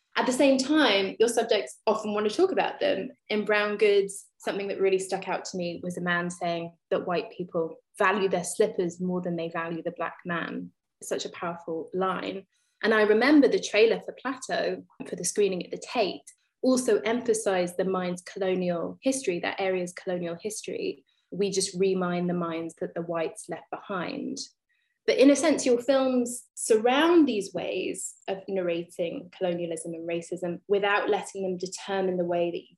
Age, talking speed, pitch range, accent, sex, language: 20-39, 180 wpm, 180-235 Hz, British, female, English